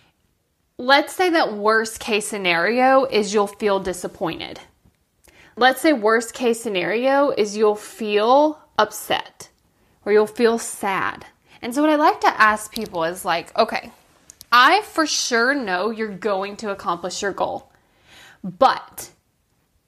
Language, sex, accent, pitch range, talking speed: English, female, American, 210-270 Hz, 135 wpm